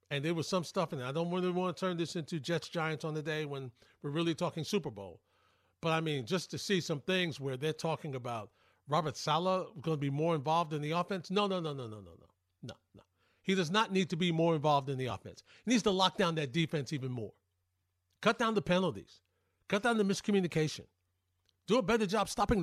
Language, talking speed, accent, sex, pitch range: English, 235 wpm, American, male, 130-195 Hz